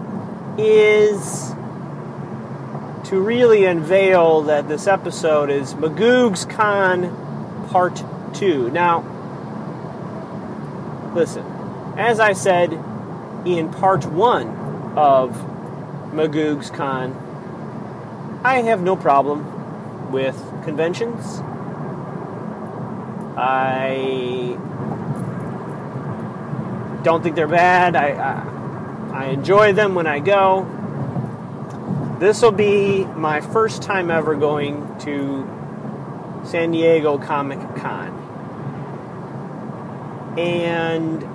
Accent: American